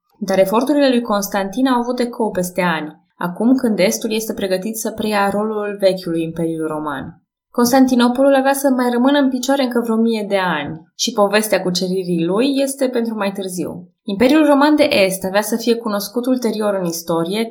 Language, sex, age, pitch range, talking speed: Romanian, female, 20-39, 175-230 Hz, 180 wpm